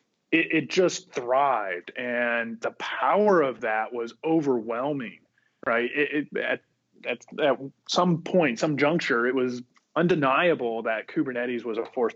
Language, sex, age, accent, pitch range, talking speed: English, male, 30-49, American, 120-190 Hz, 145 wpm